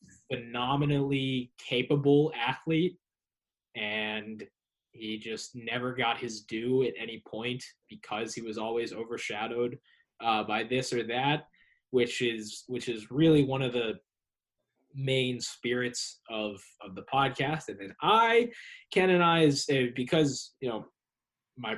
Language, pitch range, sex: English, 115-145 Hz, male